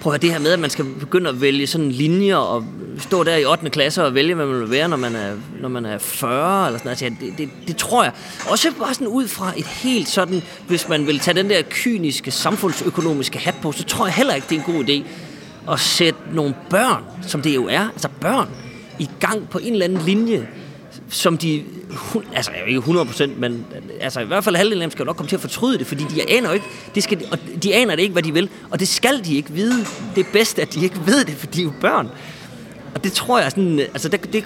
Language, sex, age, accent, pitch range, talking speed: Danish, male, 30-49, native, 145-195 Hz, 255 wpm